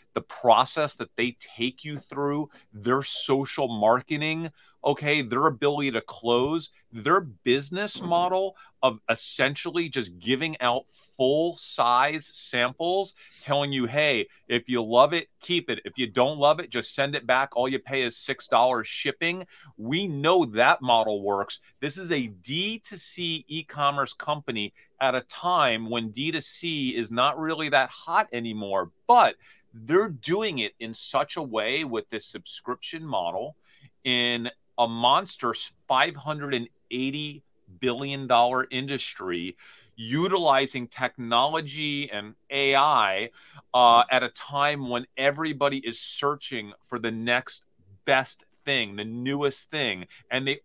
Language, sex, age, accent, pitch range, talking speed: English, male, 40-59, American, 120-155 Hz, 130 wpm